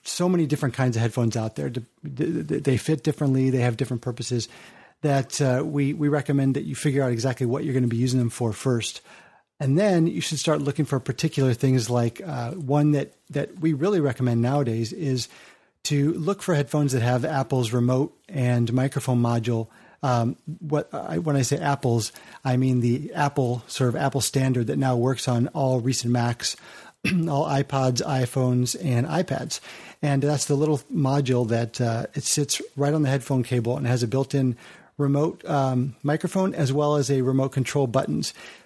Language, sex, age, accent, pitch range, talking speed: English, male, 30-49, American, 125-150 Hz, 190 wpm